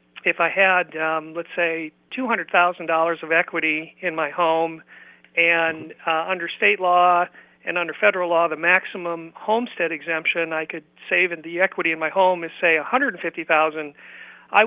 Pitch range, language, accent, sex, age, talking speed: 165-190 Hz, English, American, male, 50-69, 180 wpm